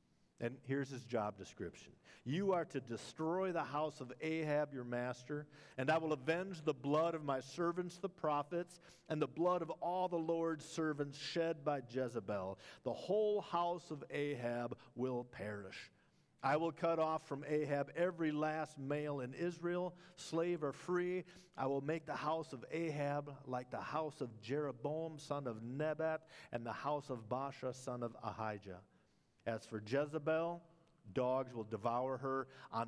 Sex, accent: male, American